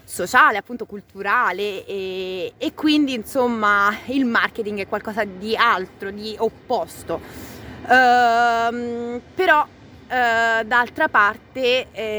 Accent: native